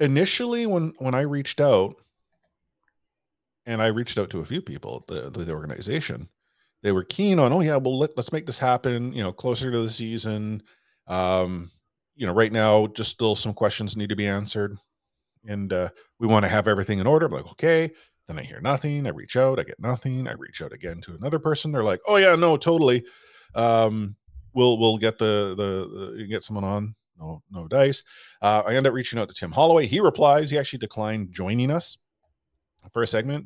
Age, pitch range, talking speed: 40-59, 100-135 Hz, 205 wpm